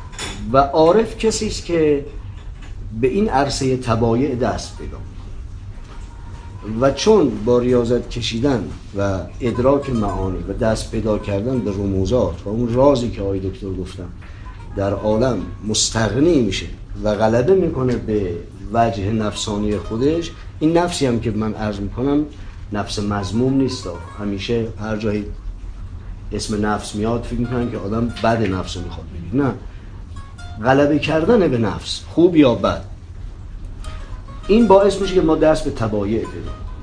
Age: 50-69